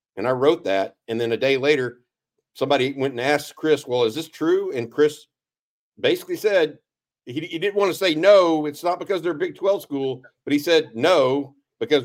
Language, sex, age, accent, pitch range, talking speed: English, male, 50-69, American, 115-145 Hz, 205 wpm